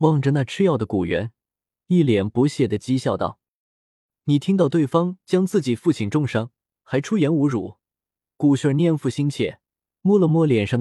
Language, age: Chinese, 20-39